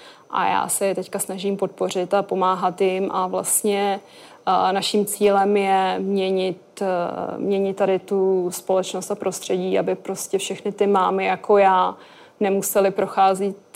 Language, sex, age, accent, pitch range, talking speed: Czech, female, 20-39, native, 190-205 Hz, 135 wpm